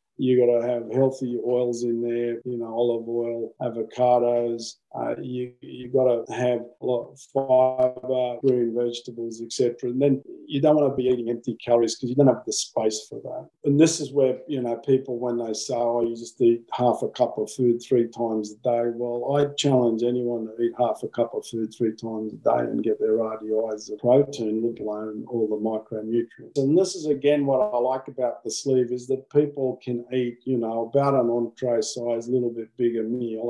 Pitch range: 115-135 Hz